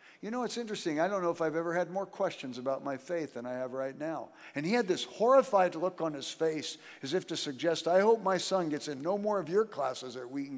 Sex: male